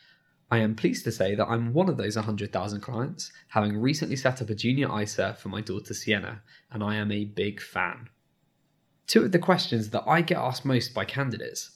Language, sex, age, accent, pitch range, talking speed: English, male, 10-29, British, 110-150 Hz, 205 wpm